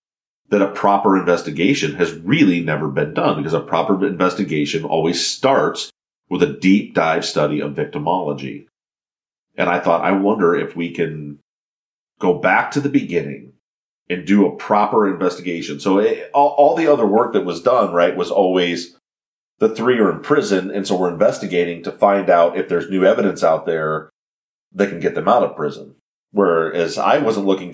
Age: 30-49